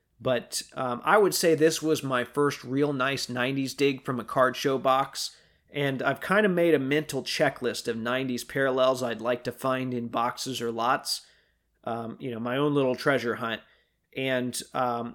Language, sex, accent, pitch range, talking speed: English, male, American, 125-155 Hz, 185 wpm